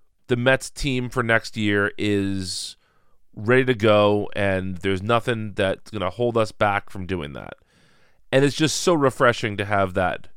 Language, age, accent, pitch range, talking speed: English, 30-49, American, 95-125 Hz, 175 wpm